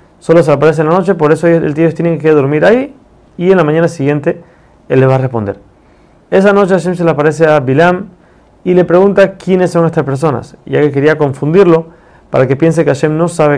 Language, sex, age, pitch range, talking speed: Spanish, male, 30-49, 140-175 Hz, 220 wpm